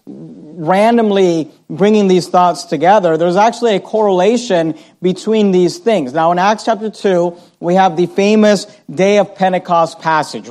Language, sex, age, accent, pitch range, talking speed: English, male, 40-59, American, 170-205 Hz, 145 wpm